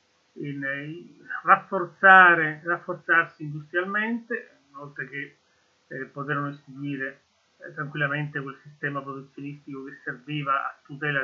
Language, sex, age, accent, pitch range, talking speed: Italian, male, 30-49, native, 150-195 Hz, 95 wpm